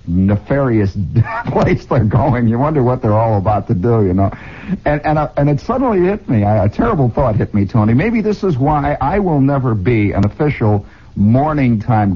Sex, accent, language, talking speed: male, American, English, 200 wpm